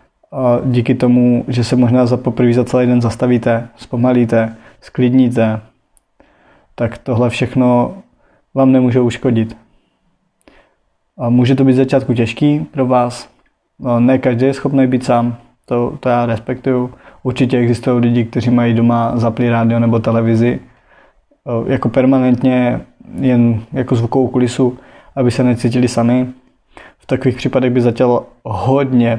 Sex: male